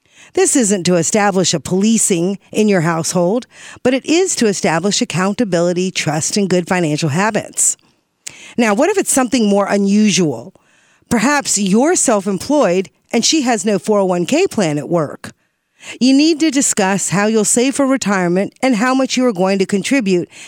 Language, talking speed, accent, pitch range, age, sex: English, 160 wpm, American, 185-255 Hz, 50-69, female